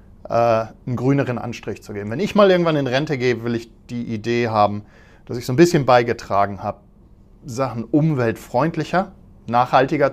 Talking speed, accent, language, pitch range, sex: 160 wpm, German, German, 105-145 Hz, male